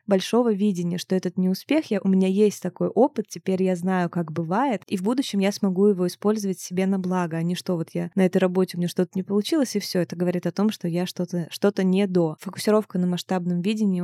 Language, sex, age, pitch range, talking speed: Russian, female, 20-39, 180-205 Hz, 235 wpm